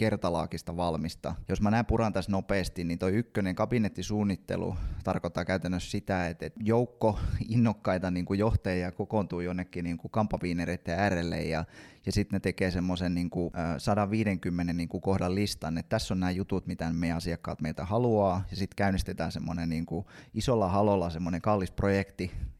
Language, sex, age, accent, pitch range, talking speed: Finnish, male, 20-39, native, 85-105 Hz, 135 wpm